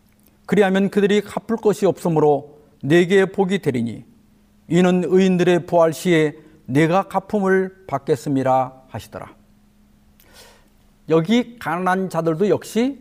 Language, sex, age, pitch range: Korean, male, 50-69, 130-205 Hz